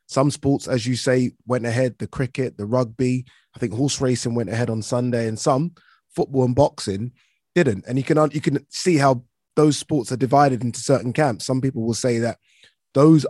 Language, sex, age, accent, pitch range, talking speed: English, male, 20-39, British, 120-140 Hz, 205 wpm